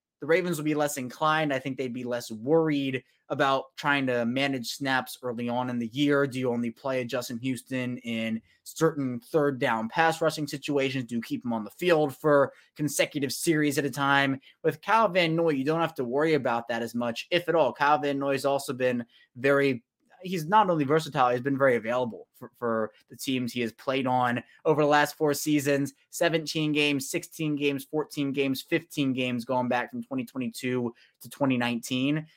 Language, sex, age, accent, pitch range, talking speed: English, male, 20-39, American, 125-155 Hz, 195 wpm